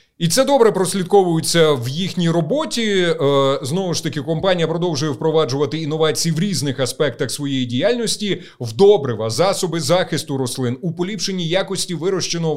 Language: Ukrainian